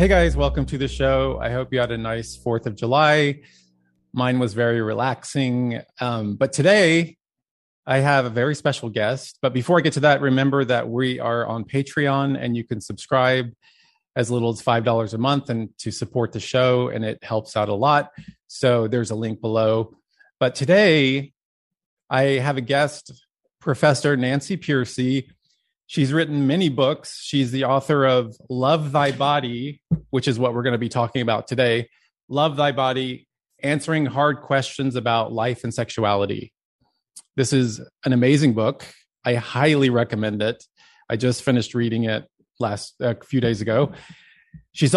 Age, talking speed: 30-49, 170 wpm